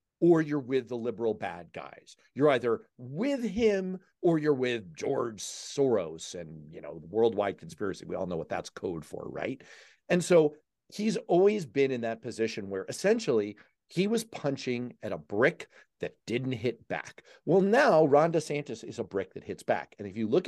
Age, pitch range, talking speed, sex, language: 40-59, 125-205 Hz, 185 wpm, male, English